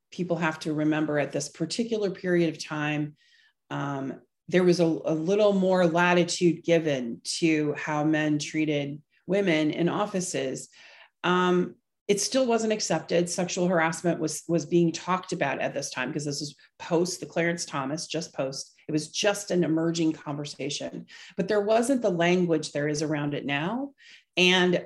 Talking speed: 160 wpm